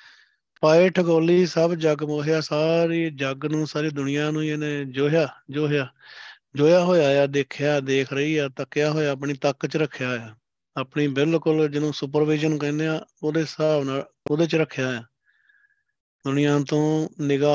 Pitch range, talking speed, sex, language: 135-155 Hz, 150 wpm, male, Punjabi